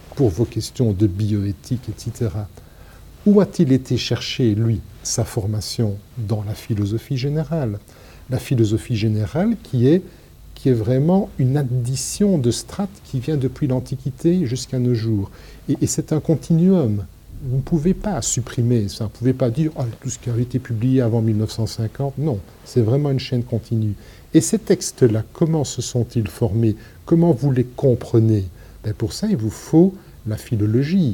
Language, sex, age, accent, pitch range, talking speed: French, male, 50-69, French, 110-145 Hz, 165 wpm